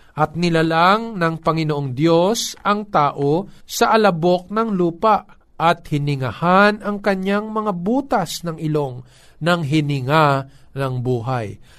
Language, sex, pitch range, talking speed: Filipino, male, 140-195 Hz, 115 wpm